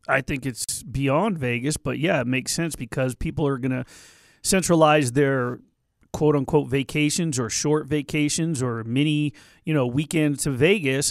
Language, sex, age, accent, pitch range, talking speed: English, male, 40-59, American, 145-195 Hz, 155 wpm